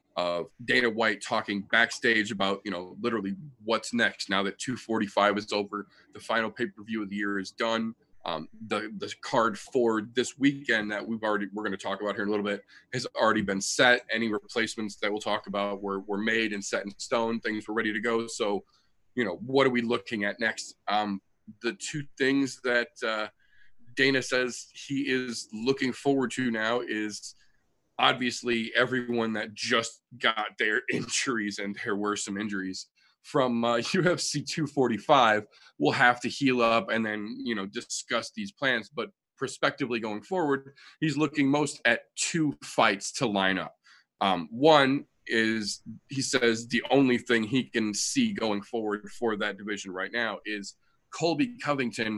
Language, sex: English, male